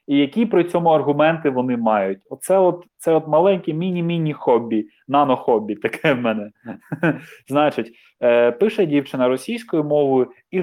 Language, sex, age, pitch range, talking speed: Ukrainian, male, 20-39, 135-170 Hz, 140 wpm